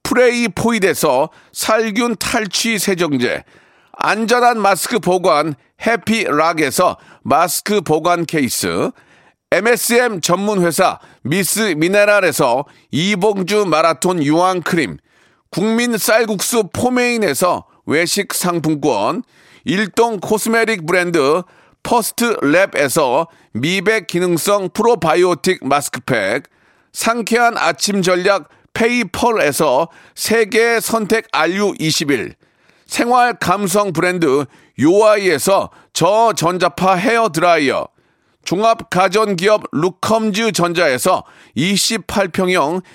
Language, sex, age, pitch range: Korean, male, 40-59, 180-230 Hz